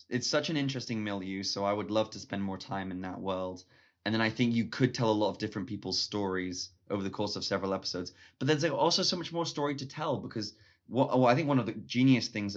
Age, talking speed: 20-39, 260 wpm